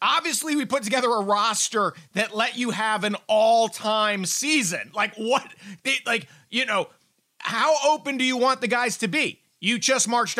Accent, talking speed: American, 180 wpm